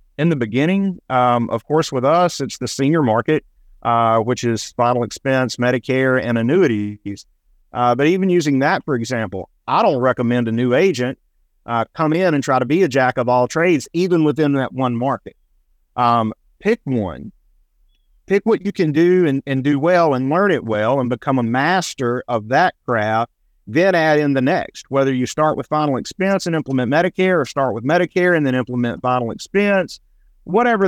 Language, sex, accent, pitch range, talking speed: English, male, American, 120-170 Hz, 190 wpm